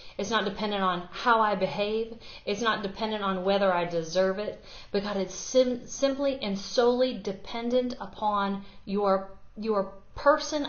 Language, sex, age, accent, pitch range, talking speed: English, female, 40-59, American, 195-245 Hz, 145 wpm